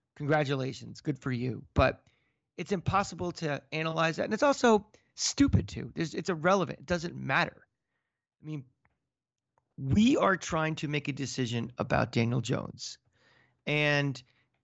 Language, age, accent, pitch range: English, 30-49, American, 130-170 Hz